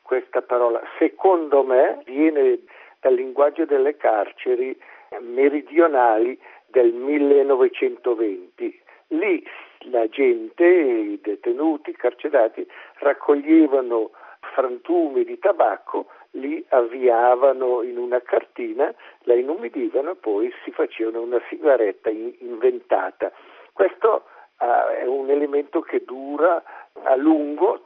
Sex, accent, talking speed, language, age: male, native, 100 wpm, Italian, 50-69